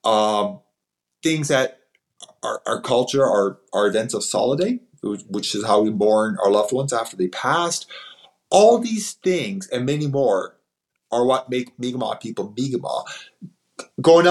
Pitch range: 110-145 Hz